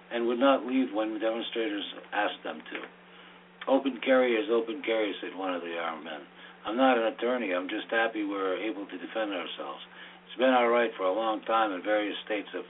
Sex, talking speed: male, 210 wpm